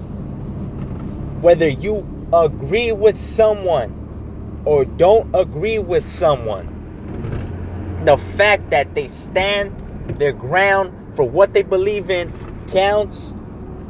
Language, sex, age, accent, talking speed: English, male, 30-49, American, 100 wpm